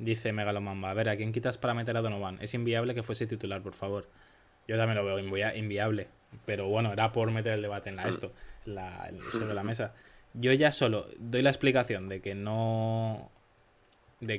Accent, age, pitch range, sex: Spanish, 20-39, 100-115 Hz, male